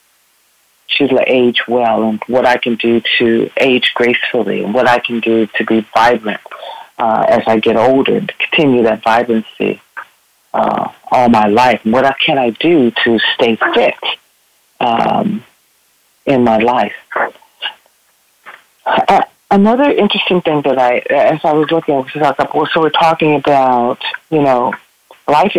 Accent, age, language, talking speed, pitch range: American, 40-59, English, 150 wpm, 120-160 Hz